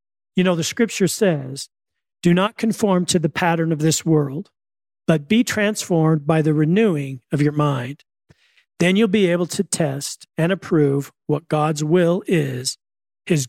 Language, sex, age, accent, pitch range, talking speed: English, male, 40-59, American, 155-195 Hz, 160 wpm